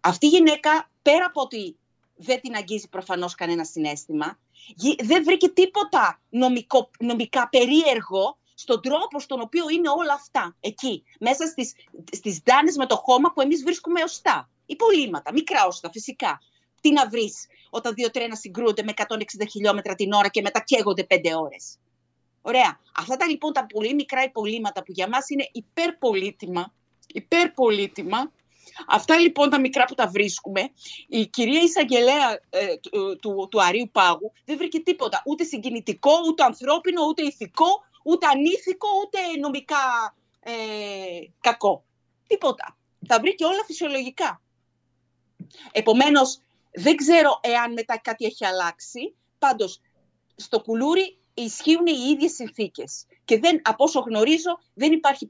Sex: female